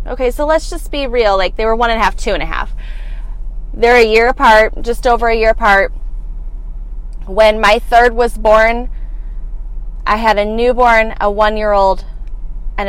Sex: female